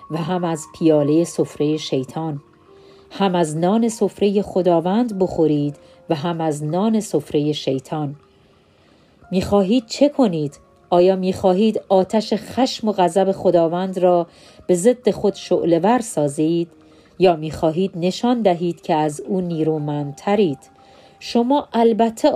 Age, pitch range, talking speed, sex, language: 40-59, 160-220 Hz, 120 wpm, female, Persian